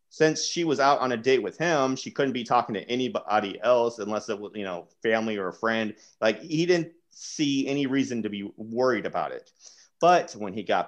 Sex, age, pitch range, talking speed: male, 30-49, 110-165 Hz, 220 wpm